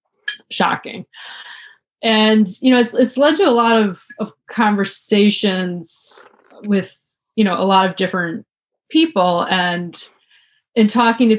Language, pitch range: English, 185-230 Hz